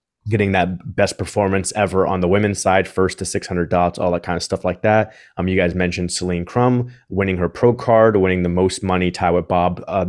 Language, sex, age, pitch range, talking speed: English, male, 20-39, 90-100 Hz, 225 wpm